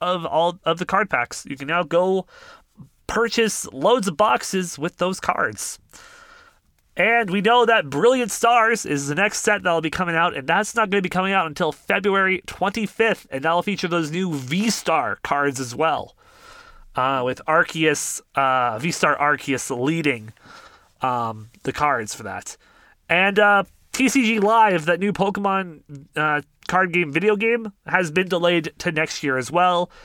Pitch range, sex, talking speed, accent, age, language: 150-210 Hz, male, 165 wpm, American, 30-49, English